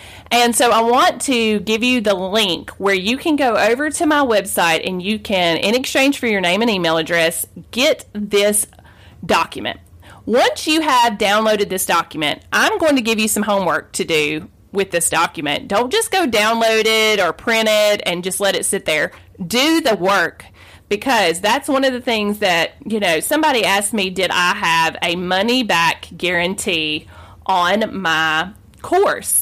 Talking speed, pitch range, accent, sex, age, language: 180 wpm, 185-245 Hz, American, female, 30-49, English